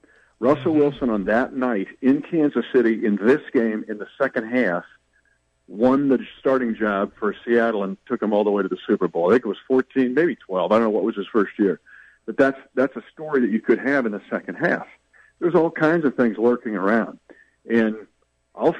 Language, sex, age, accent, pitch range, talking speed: English, male, 50-69, American, 110-135 Hz, 215 wpm